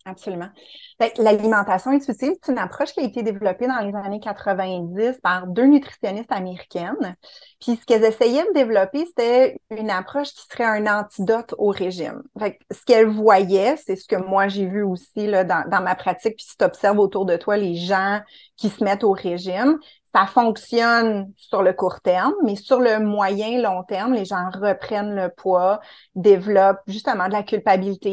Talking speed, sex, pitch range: 175 wpm, female, 195-245 Hz